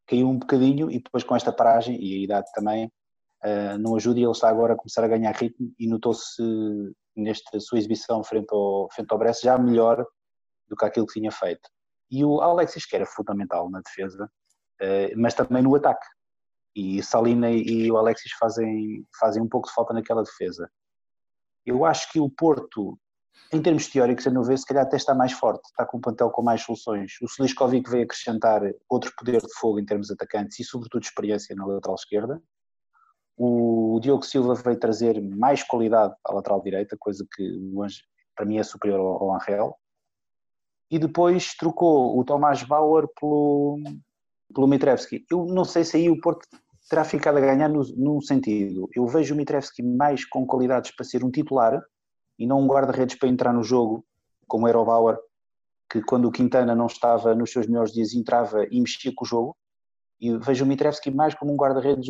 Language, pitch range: Portuguese, 110-135 Hz